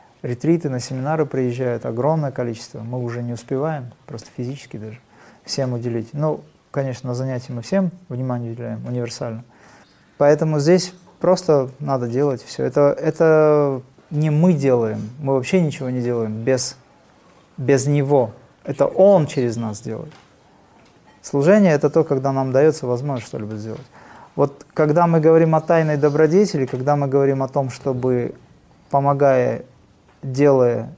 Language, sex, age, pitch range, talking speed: Russian, male, 30-49, 120-150 Hz, 140 wpm